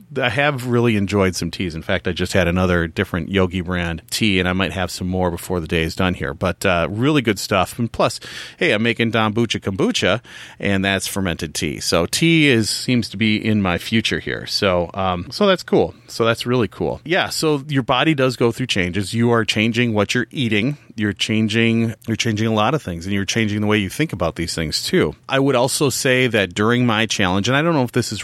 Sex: male